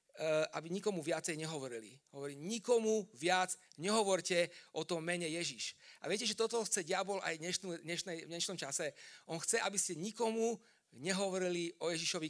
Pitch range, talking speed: 155-195 Hz, 145 wpm